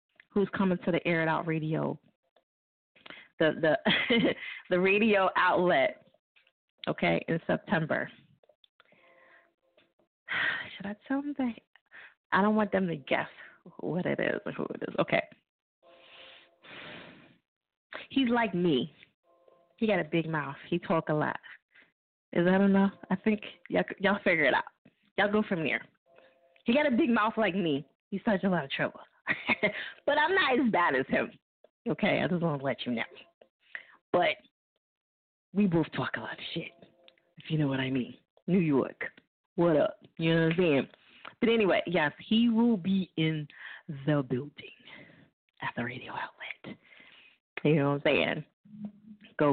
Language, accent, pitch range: English, American, 155-210 Hz